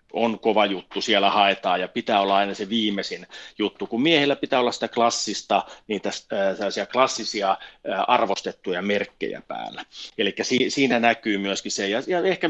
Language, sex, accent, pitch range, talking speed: Finnish, male, native, 100-125 Hz, 145 wpm